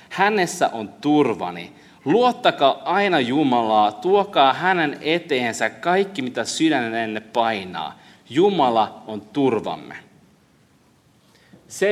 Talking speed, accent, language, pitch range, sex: 85 wpm, native, Finnish, 110-165 Hz, male